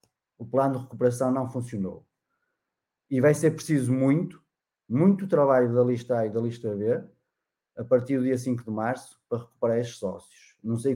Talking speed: 180 wpm